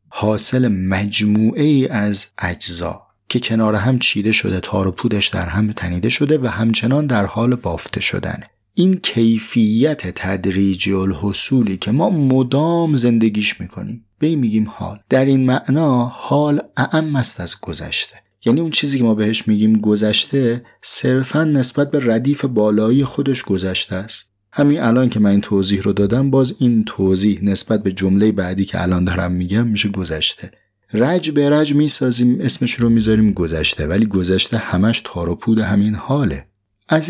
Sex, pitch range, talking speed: male, 95-125 Hz, 150 wpm